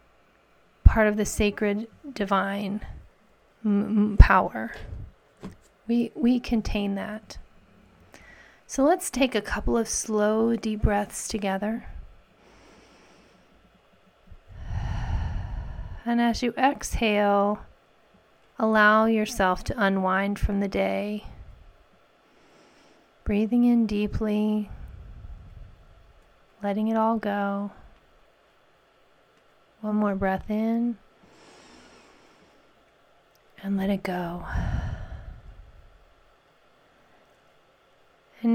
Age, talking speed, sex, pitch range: 30-49, 70 wpm, female, 190-225 Hz